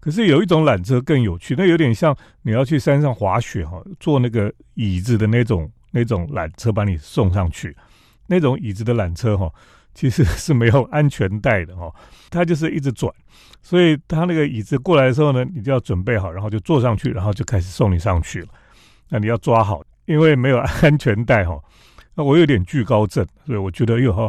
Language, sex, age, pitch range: Chinese, male, 40-59, 100-150 Hz